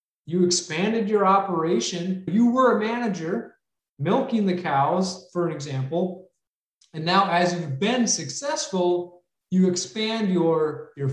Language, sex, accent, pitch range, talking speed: English, male, American, 155-200 Hz, 125 wpm